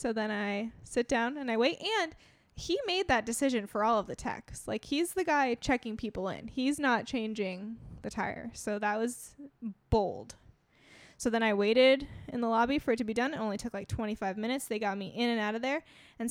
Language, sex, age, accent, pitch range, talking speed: English, female, 10-29, American, 215-275 Hz, 225 wpm